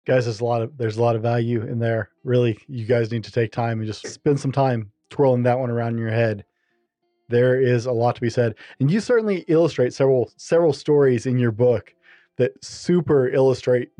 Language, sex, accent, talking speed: English, male, American, 220 wpm